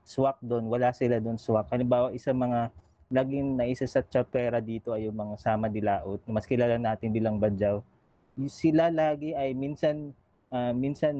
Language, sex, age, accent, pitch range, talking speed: Filipino, male, 20-39, native, 115-140 Hz, 155 wpm